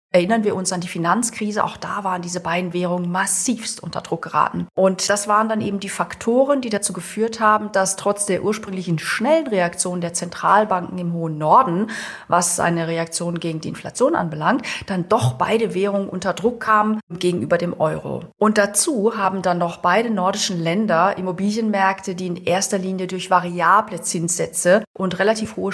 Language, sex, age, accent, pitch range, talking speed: German, female, 40-59, German, 175-210 Hz, 175 wpm